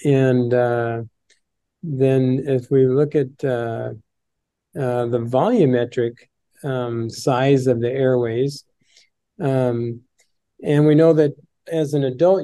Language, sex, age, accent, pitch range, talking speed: English, male, 40-59, American, 125-145 Hz, 115 wpm